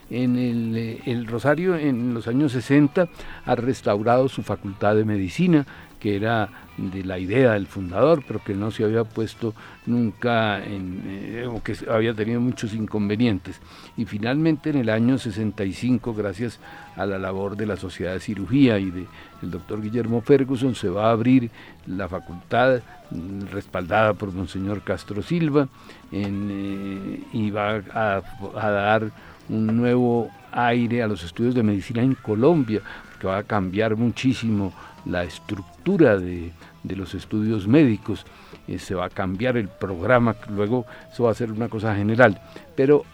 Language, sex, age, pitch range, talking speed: Spanish, male, 60-79, 100-125 Hz, 160 wpm